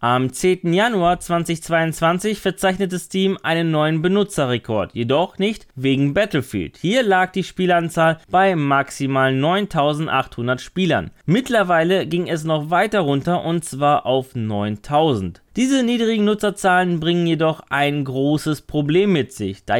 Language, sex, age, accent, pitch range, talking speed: German, male, 20-39, German, 135-190 Hz, 125 wpm